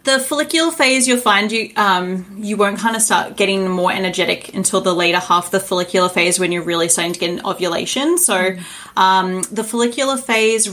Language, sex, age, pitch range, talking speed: English, female, 30-49, 180-215 Hz, 200 wpm